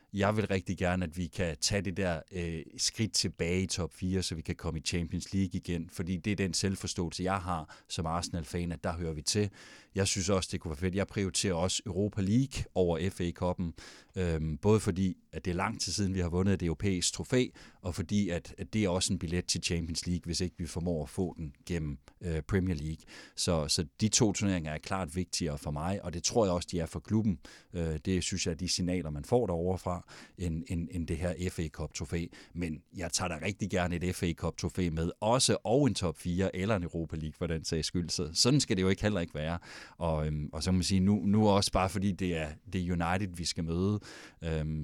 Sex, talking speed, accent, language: male, 235 wpm, native, Danish